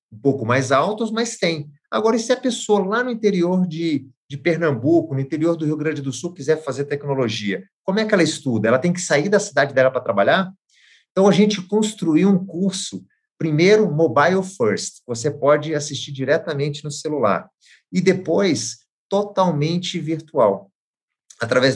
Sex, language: male, Portuguese